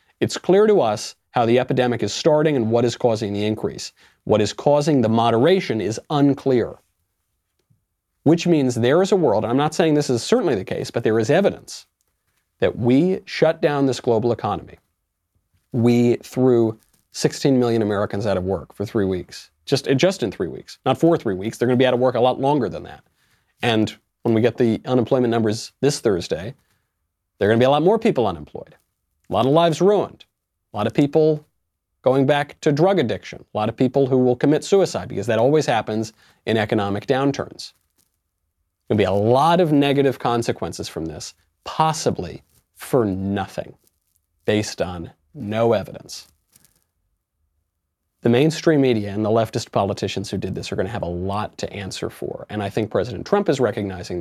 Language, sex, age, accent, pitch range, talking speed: English, male, 40-59, American, 100-140 Hz, 190 wpm